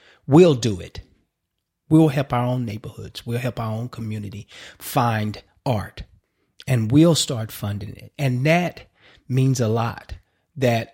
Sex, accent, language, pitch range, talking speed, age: male, American, English, 105-130 Hz, 145 wpm, 30-49